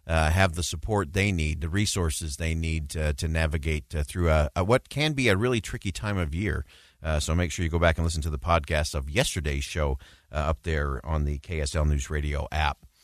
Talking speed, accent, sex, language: 220 wpm, American, male, English